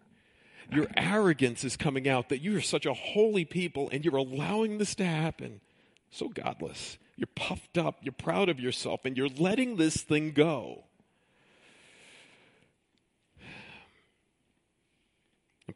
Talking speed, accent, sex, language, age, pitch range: 130 wpm, American, male, English, 50-69, 110-150 Hz